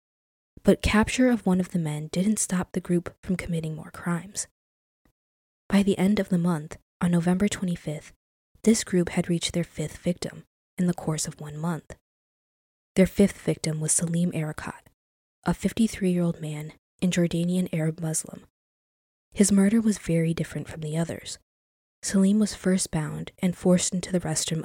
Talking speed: 165 wpm